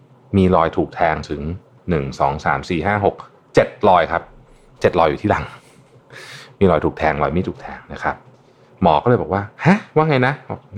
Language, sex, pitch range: Thai, male, 90-130 Hz